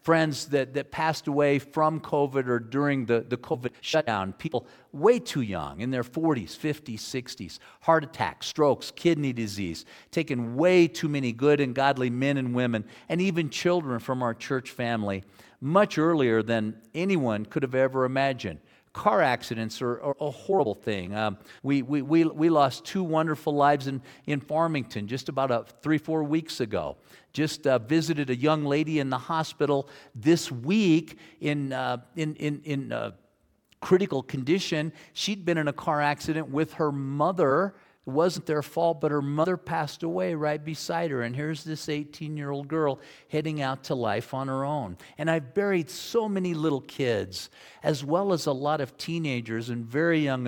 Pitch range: 130-165 Hz